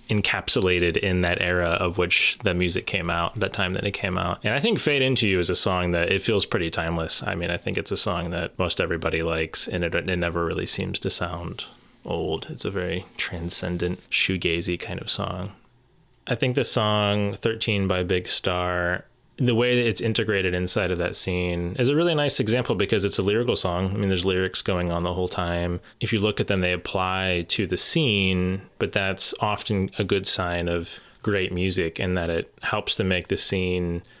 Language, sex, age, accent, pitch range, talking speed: English, male, 20-39, American, 85-105 Hz, 210 wpm